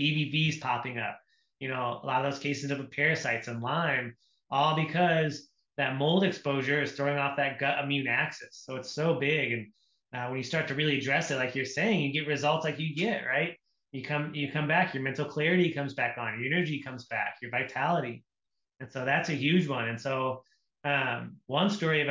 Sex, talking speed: male, 210 wpm